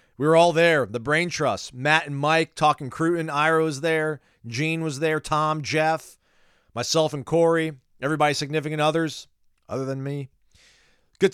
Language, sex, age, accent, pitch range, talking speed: English, male, 40-59, American, 130-165 Hz, 160 wpm